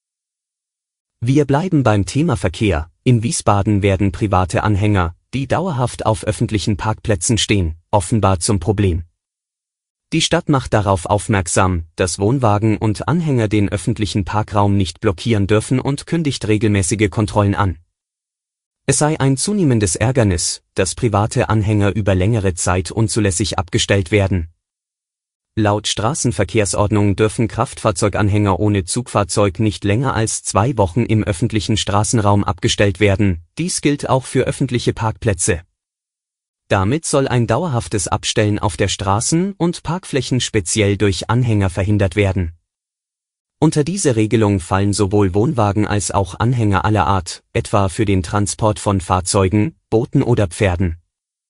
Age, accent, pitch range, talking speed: 30-49, German, 100-115 Hz, 130 wpm